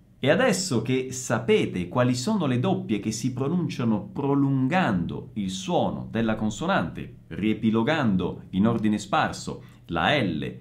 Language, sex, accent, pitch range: Italian, male, native, 110-165 Hz